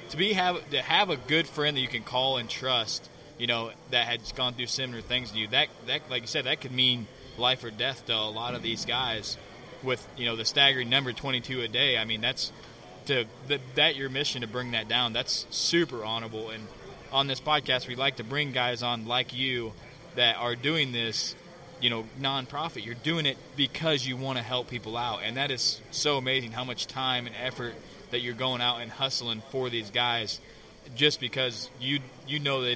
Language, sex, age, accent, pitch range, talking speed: English, male, 20-39, American, 120-135 Hz, 220 wpm